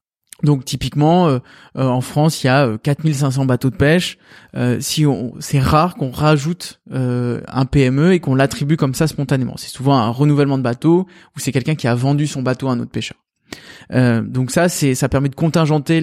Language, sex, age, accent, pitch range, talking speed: French, male, 20-39, French, 135-165 Hz, 210 wpm